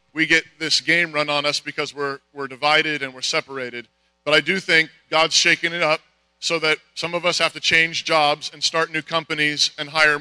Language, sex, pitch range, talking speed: English, male, 145-165 Hz, 220 wpm